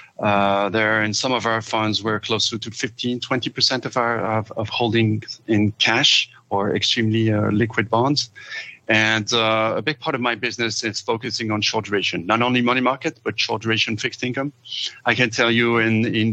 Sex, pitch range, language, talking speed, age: male, 105-125 Hz, English, 190 wpm, 40-59